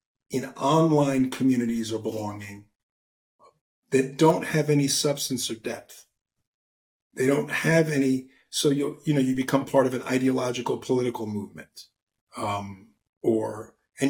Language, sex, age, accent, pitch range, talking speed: English, male, 50-69, American, 115-140 Hz, 130 wpm